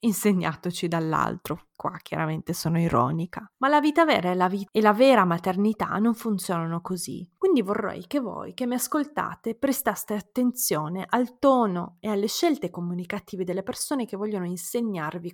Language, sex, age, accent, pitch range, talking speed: Italian, female, 20-39, native, 175-225 Hz, 155 wpm